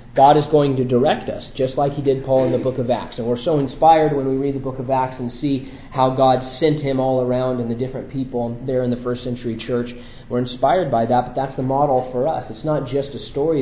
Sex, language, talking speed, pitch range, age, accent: male, English, 265 wpm, 120-135 Hz, 30-49, American